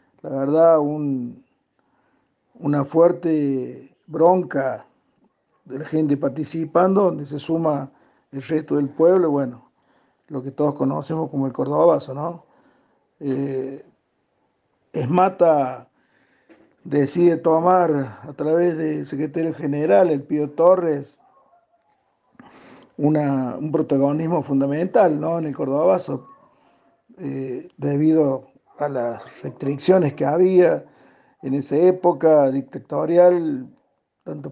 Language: Spanish